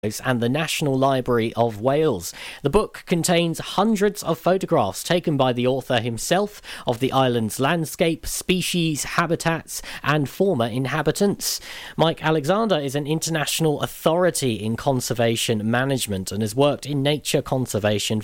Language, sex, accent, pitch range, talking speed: English, male, British, 125-175 Hz, 135 wpm